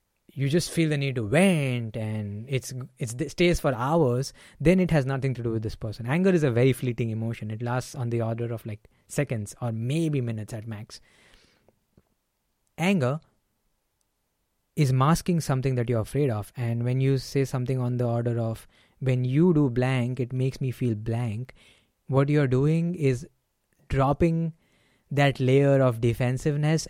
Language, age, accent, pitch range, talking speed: English, 20-39, Indian, 115-140 Hz, 170 wpm